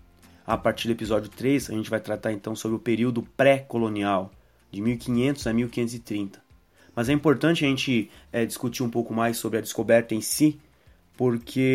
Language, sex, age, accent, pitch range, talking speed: Portuguese, male, 30-49, Brazilian, 105-120 Hz, 175 wpm